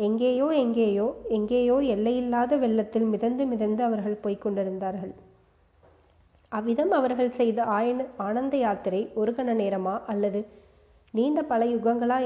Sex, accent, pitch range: female, native, 205-245 Hz